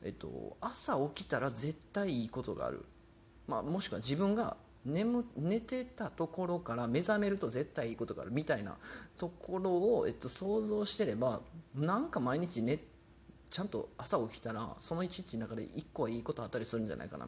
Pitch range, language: 115-170 Hz, Japanese